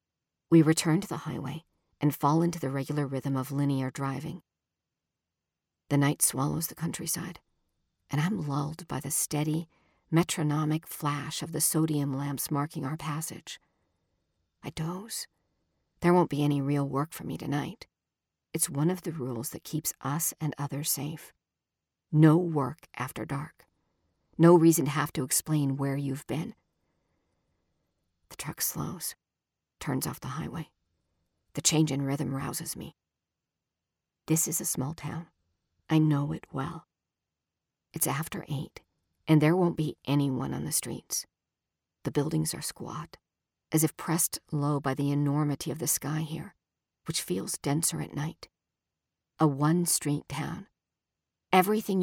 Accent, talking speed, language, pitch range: American, 145 wpm, English, 140-160 Hz